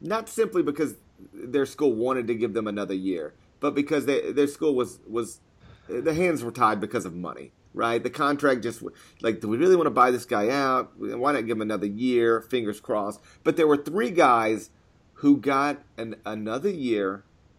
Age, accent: 40-59, American